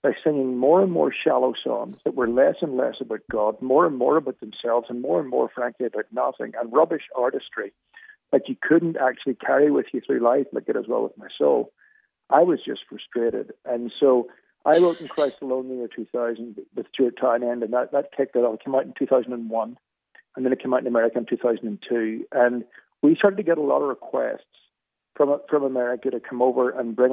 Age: 50-69